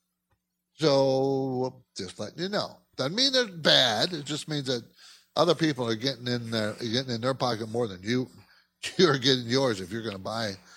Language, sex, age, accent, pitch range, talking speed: English, male, 60-79, American, 125-180 Hz, 185 wpm